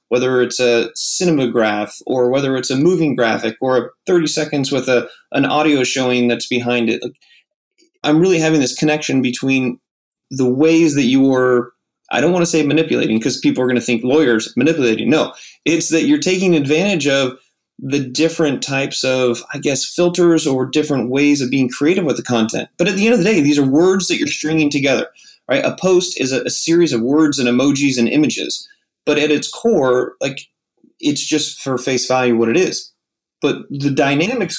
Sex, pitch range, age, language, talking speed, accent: male, 125-160 Hz, 20-39, English, 200 wpm, American